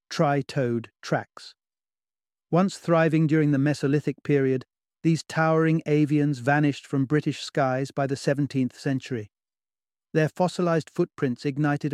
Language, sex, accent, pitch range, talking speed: English, male, British, 135-160 Hz, 115 wpm